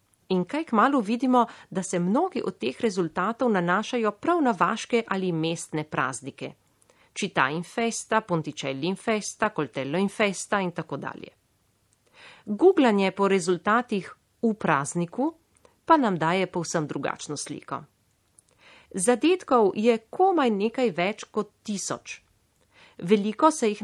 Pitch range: 170-235 Hz